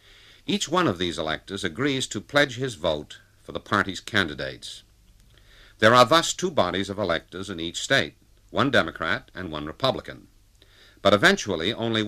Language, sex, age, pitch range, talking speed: English, male, 60-79, 95-110 Hz, 160 wpm